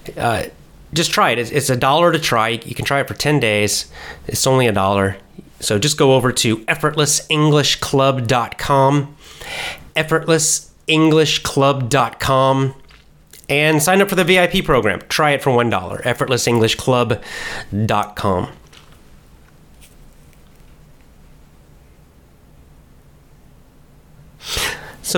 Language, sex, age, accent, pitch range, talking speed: English, male, 30-49, American, 115-155 Hz, 100 wpm